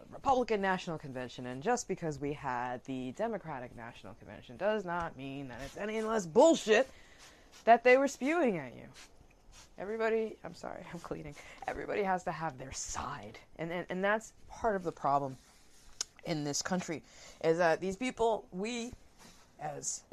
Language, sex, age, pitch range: English, female, 20-39, 140-205 Hz